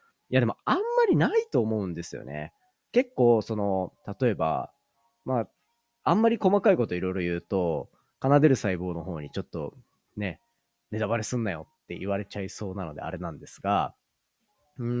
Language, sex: Japanese, male